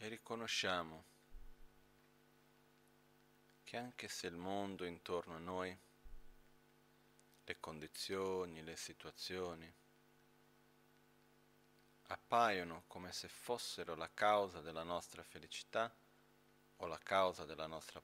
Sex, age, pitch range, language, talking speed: male, 40-59, 85-100 Hz, Italian, 95 wpm